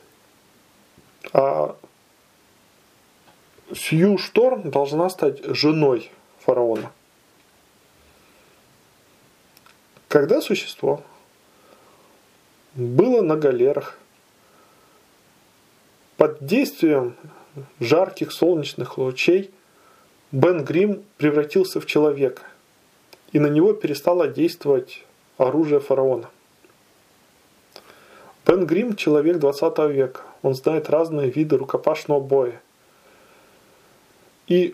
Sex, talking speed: male, 75 wpm